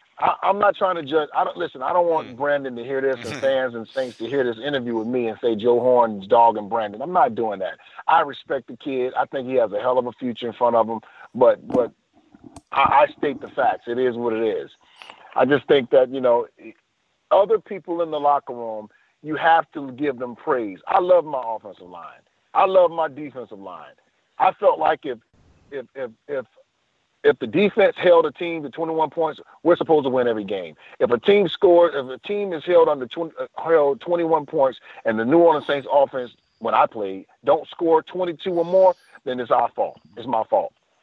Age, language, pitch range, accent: 40-59, English, 120-170 Hz, American